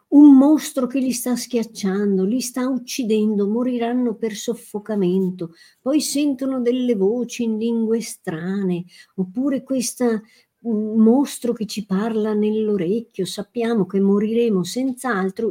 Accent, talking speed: native, 115 wpm